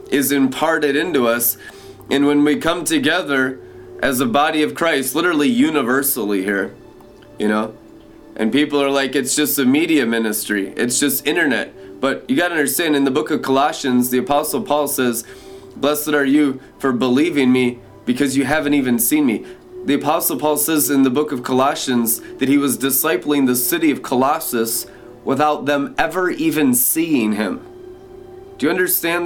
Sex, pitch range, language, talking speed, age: male, 125-155 Hz, English, 170 wpm, 20-39